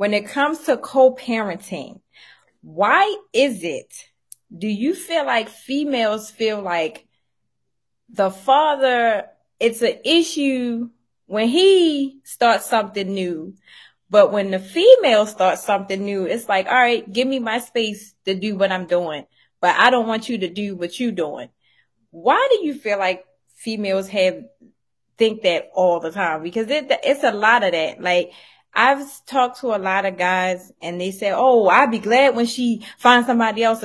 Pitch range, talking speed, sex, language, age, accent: 195-255 Hz, 170 wpm, female, English, 20-39, American